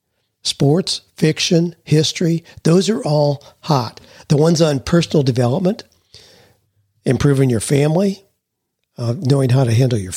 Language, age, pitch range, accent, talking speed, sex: English, 50-69, 120-155 Hz, American, 125 wpm, male